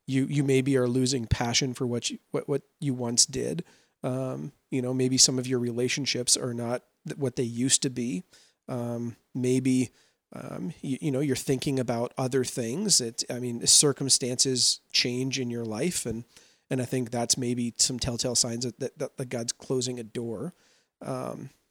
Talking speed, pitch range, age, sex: 180 wpm, 120-145 Hz, 40-59, male